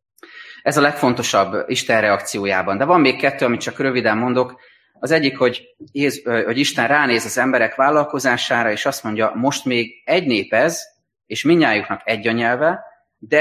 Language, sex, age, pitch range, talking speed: Hungarian, male, 30-49, 105-125 Hz, 150 wpm